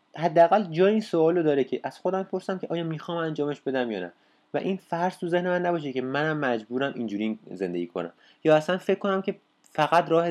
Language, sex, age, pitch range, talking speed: Persian, male, 30-49, 115-165 Hz, 205 wpm